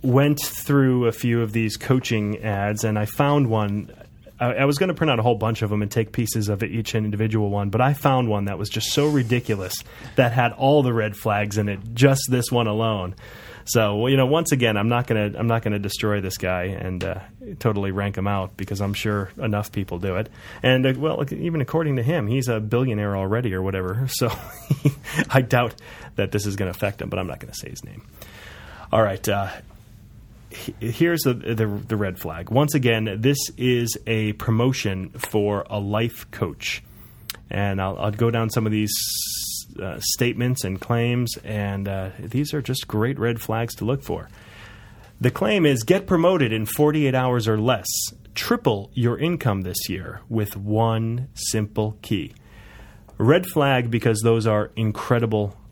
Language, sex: English, male